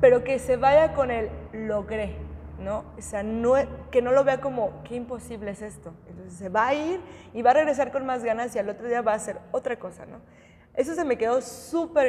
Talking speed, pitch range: 235 wpm, 205-270 Hz